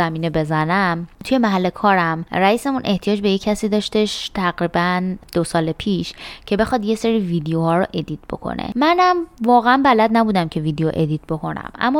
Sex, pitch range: female, 160-205 Hz